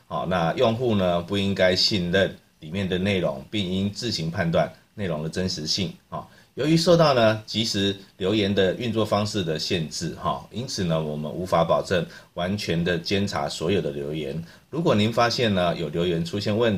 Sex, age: male, 30-49